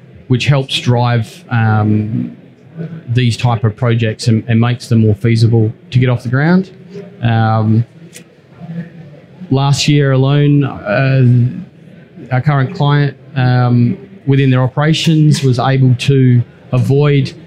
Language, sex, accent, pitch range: English, male, Australian, 115-150 Hz